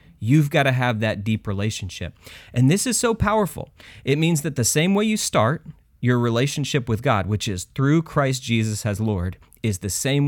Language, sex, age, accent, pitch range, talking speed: English, male, 30-49, American, 100-140 Hz, 200 wpm